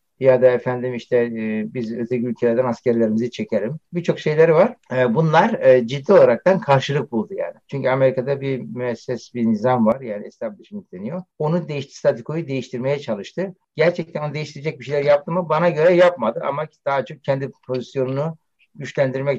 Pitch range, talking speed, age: 120-160 Hz, 160 wpm, 60-79